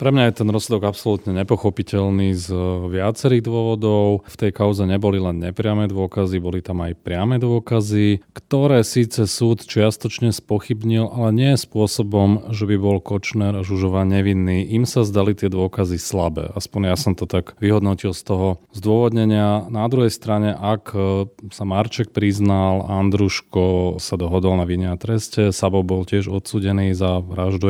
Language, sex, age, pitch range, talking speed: Slovak, male, 30-49, 95-110 Hz, 155 wpm